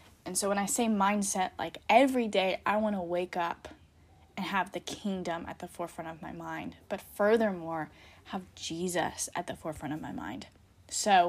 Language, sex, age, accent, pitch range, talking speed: English, female, 10-29, American, 180-215 Hz, 185 wpm